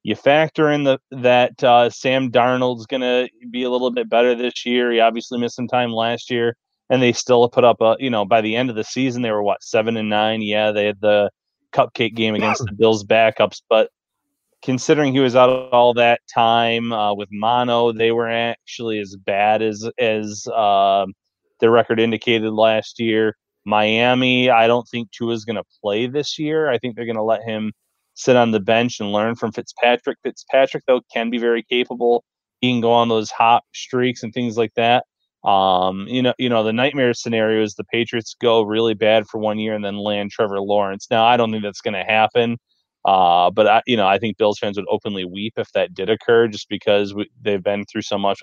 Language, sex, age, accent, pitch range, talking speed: English, male, 30-49, American, 105-125 Hz, 215 wpm